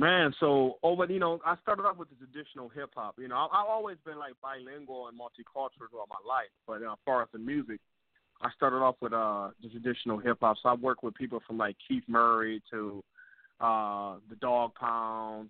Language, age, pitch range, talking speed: English, 30-49, 115-145 Hz, 225 wpm